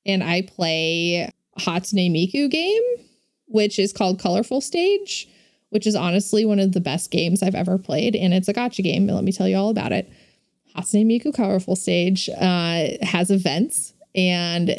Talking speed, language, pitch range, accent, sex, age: 170 wpm, English, 190-240 Hz, American, female, 20-39